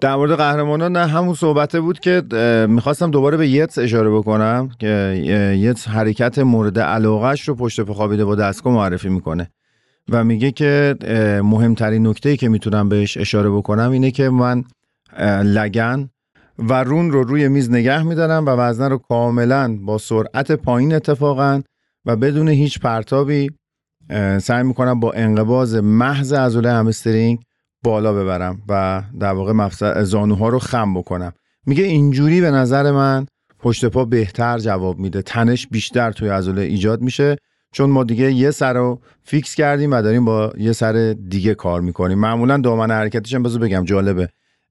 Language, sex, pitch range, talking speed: Persian, male, 110-135 Hz, 155 wpm